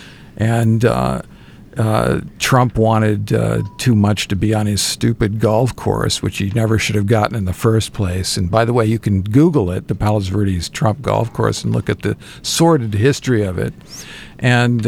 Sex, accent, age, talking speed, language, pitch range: male, American, 50-69, 195 wpm, English, 105-130 Hz